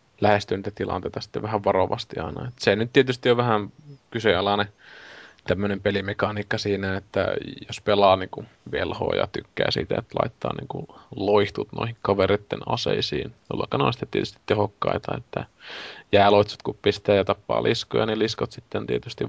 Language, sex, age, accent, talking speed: Finnish, male, 20-39, native, 150 wpm